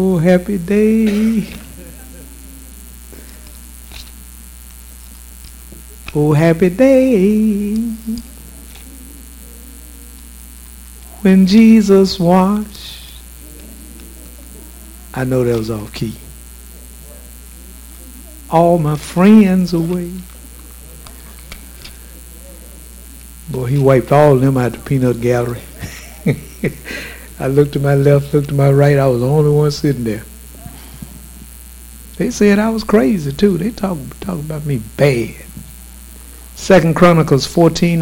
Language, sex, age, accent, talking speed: English, male, 60-79, American, 95 wpm